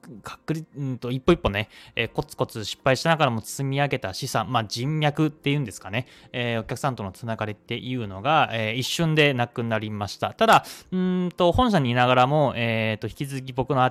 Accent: native